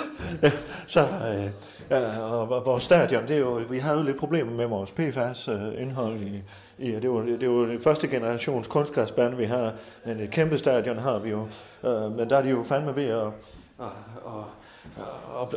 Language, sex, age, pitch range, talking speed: Danish, male, 30-49, 120-155 Hz, 180 wpm